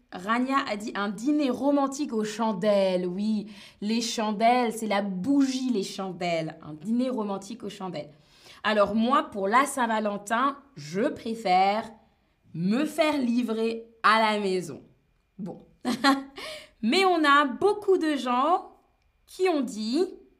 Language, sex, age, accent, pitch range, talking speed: French, female, 20-39, French, 215-300 Hz, 130 wpm